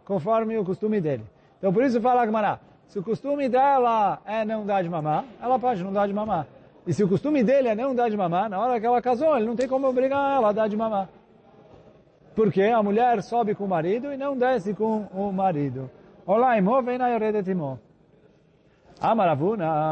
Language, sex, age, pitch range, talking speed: Portuguese, male, 40-59, 150-210 Hz, 205 wpm